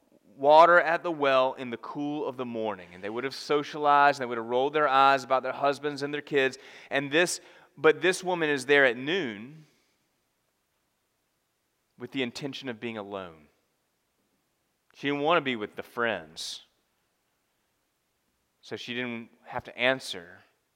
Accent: American